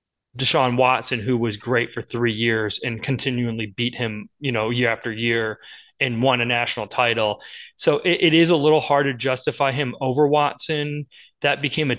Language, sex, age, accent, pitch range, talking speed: English, male, 20-39, American, 115-140 Hz, 185 wpm